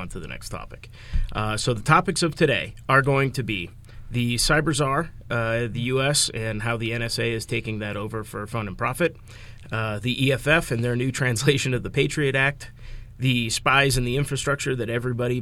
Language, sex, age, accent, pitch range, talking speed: English, male, 30-49, American, 110-130 Hz, 195 wpm